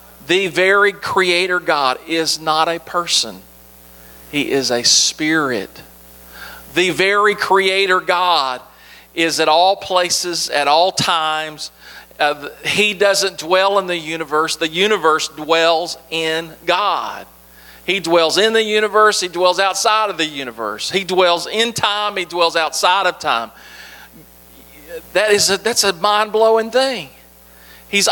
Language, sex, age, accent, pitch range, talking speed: English, male, 40-59, American, 145-195 Hz, 130 wpm